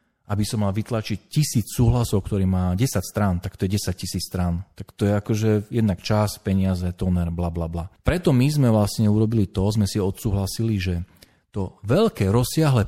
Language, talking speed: Slovak, 185 wpm